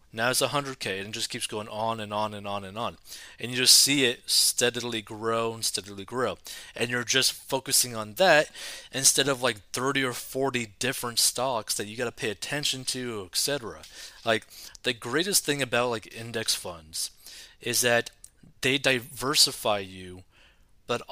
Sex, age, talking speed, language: male, 20-39, 180 wpm, English